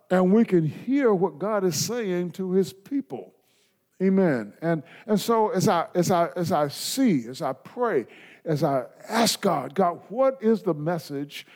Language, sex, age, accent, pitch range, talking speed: English, male, 50-69, American, 150-195 Hz, 175 wpm